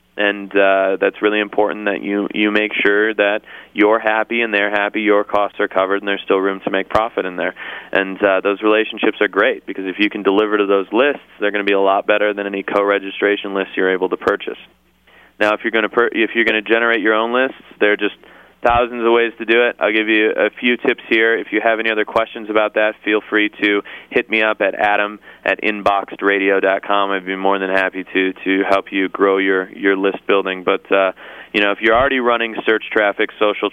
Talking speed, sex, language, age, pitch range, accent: 230 wpm, male, English, 30-49, 100-110 Hz, American